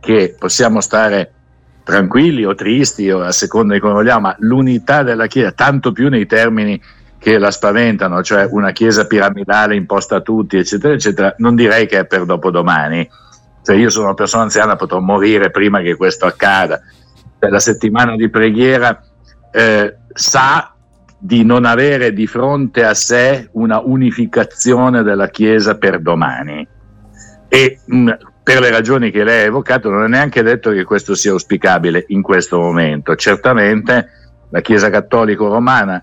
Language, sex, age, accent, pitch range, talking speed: Italian, male, 60-79, native, 100-120 Hz, 150 wpm